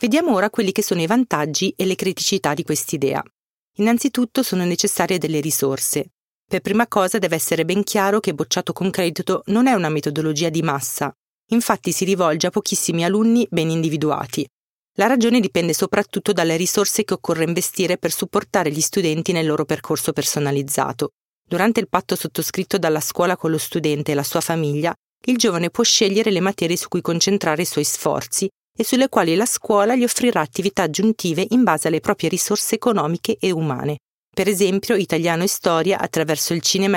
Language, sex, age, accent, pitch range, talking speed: Italian, female, 30-49, native, 160-205 Hz, 175 wpm